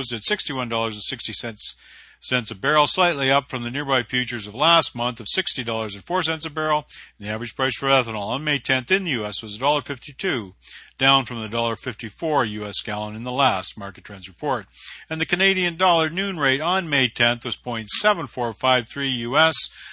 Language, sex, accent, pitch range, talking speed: English, male, American, 115-150 Hz, 165 wpm